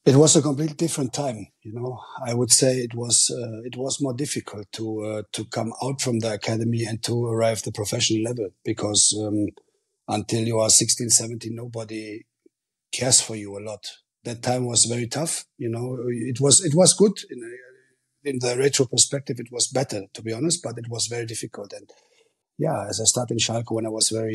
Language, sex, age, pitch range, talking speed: Greek, male, 40-59, 110-130 Hz, 210 wpm